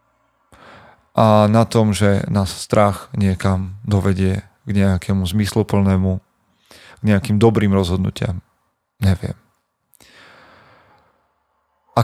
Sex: male